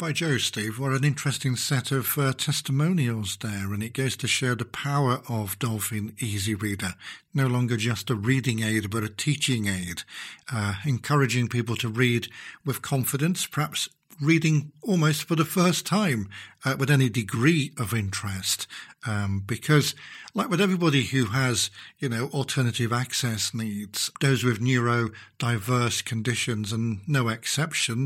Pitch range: 110-145 Hz